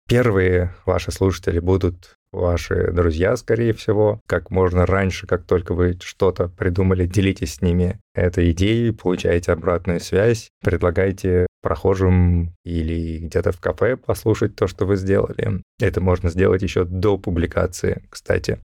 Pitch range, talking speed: 90-100 Hz, 135 wpm